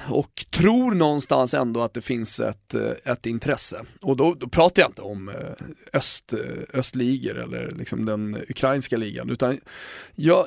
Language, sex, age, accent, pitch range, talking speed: Swedish, male, 30-49, native, 125-165 Hz, 150 wpm